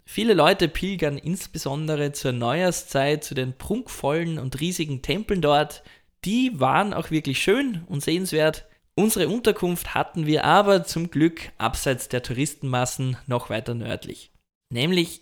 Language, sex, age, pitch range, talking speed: German, male, 20-39, 135-175 Hz, 135 wpm